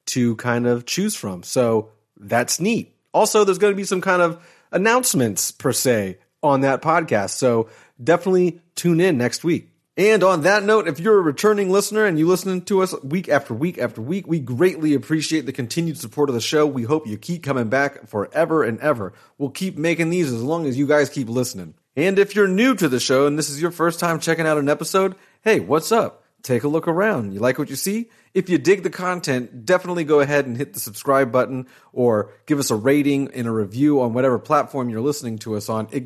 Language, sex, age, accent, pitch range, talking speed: English, male, 30-49, American, 125-175 Hz, 225 wpm